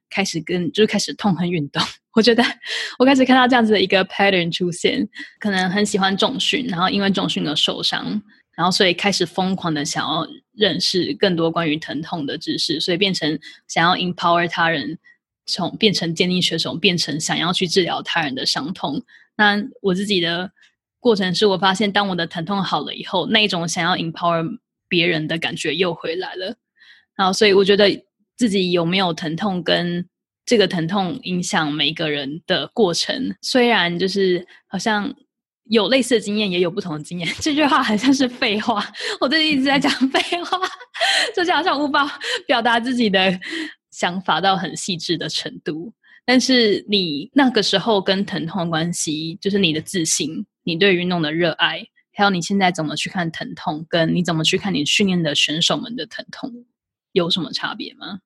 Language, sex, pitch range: English, female, 175-230 Hz